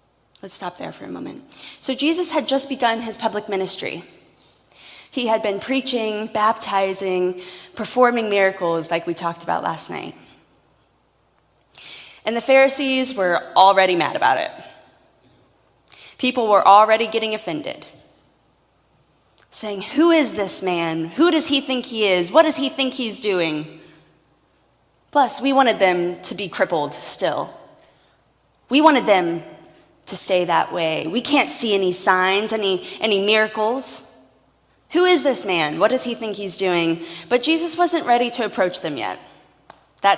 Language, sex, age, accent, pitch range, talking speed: English, female, 20-39, American, 190-255 Hz, 150 wpm